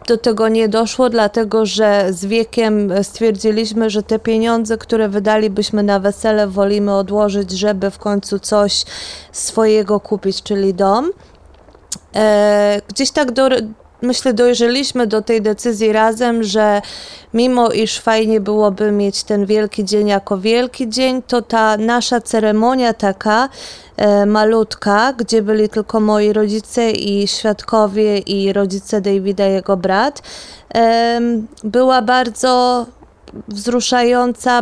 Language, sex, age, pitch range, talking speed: Polish, female, 20-39, 200-230 Hz, 120 wpm